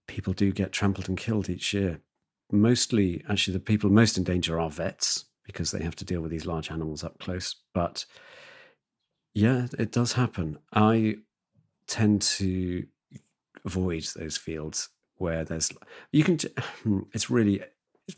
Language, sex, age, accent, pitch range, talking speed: English, male, 40-59, British, 85-110 Hz, 150 wpm